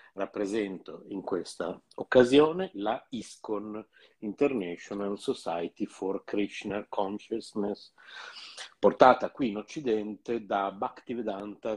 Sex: male